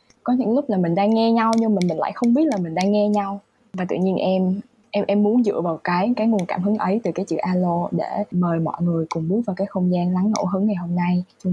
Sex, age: female, 10-29